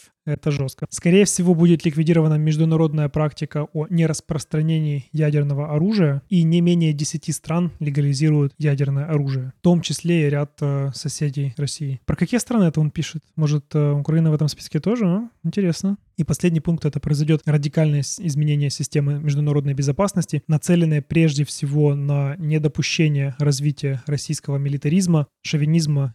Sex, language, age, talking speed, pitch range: male, Ukrainian, 20-39, 140 wpm, 145-165 Hz